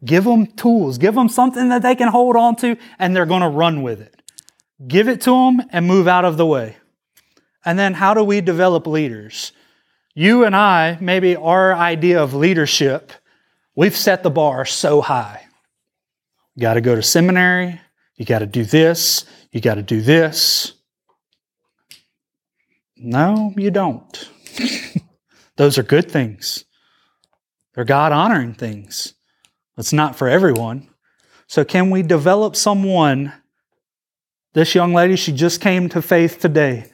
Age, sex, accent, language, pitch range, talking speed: 30-49, male, American, English, 145-185 Hz, 155 wpm